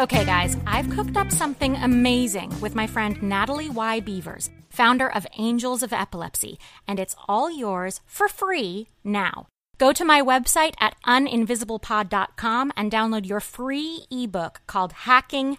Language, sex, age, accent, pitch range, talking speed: English, female, 30-49, American, 200-255 Hz, 145 wpm